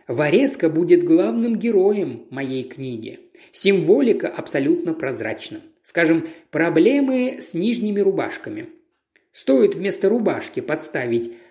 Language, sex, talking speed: Russian, male, 95 wpm